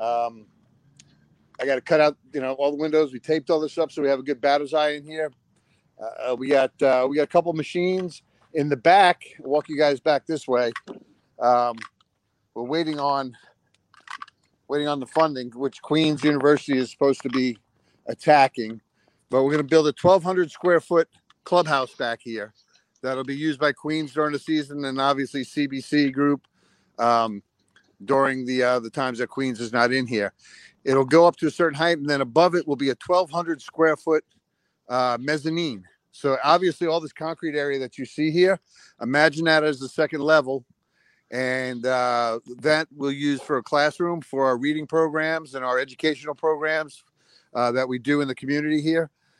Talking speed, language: 185 wpm, English